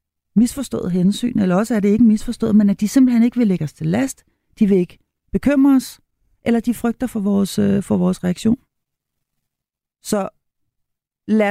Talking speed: 165 wpm